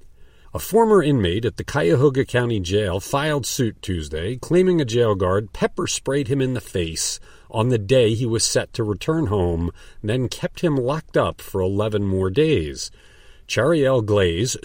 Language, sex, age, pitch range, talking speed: English, male, 50-69, 100-145 Hz, 170 wpm